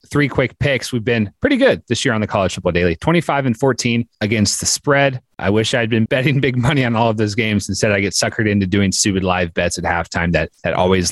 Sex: male